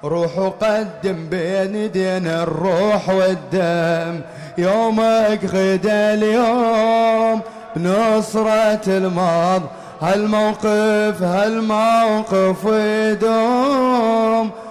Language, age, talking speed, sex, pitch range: English, 30-49, 55 wpm, male, 185-220 Hz